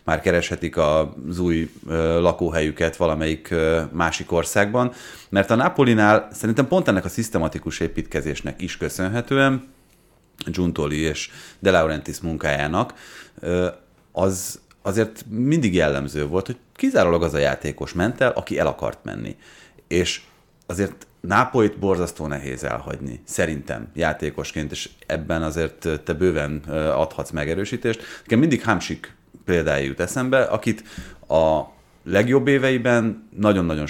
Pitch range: 80-105 Hz